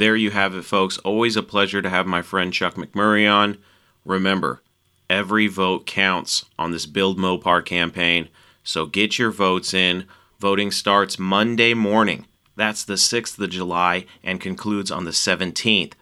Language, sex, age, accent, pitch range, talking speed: English, male, 30-49, American, 90-105 Hz, 160 wpm